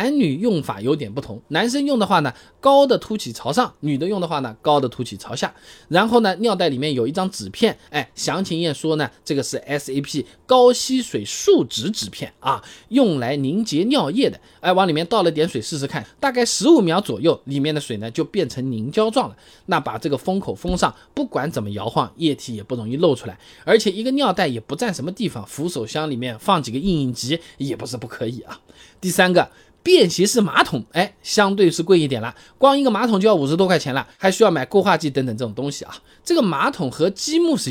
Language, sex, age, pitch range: Chinese, male, 20-39, 140-230 Hz